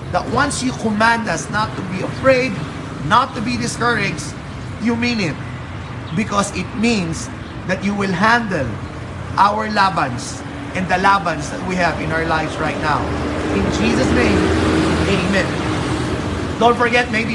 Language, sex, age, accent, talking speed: Filipino, male, 30-49, native, 150 wpm